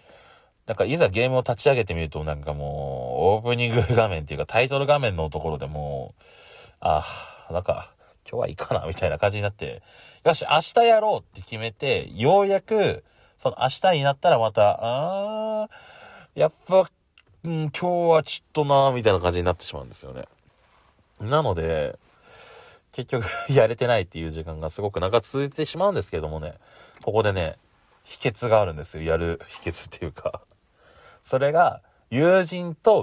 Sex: male